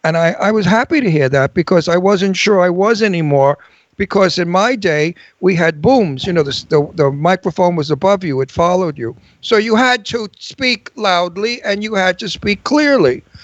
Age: 60-79